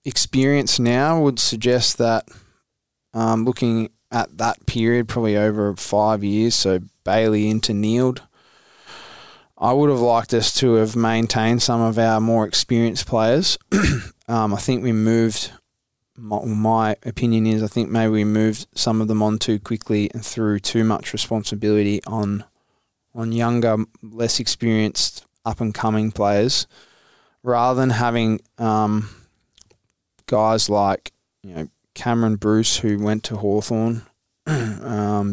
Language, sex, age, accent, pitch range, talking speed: English, male, 20-39, Australian, 110-120 Hz, 135 wpm